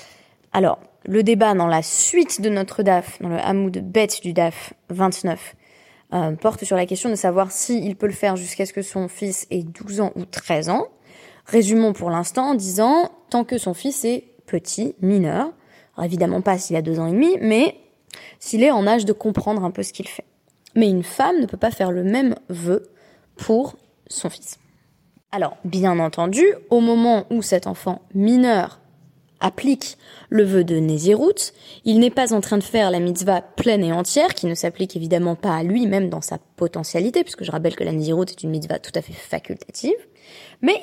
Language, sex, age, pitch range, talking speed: French, female, 20-39, 180-230 Hz, 200 wpm